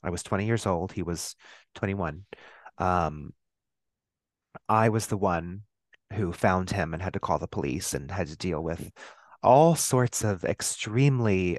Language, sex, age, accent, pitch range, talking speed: English, male, 30-49, American, 100-135 Hz, 160 wpm